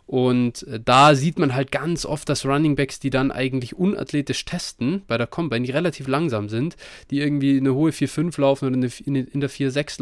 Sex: male